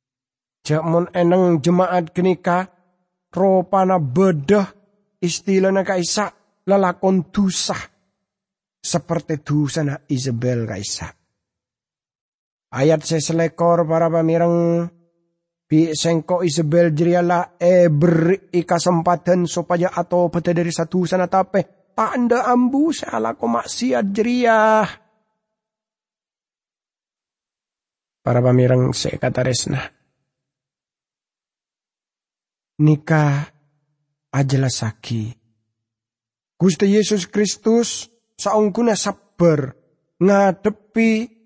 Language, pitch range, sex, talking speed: English, 135-185 Hz, male, 75 wpm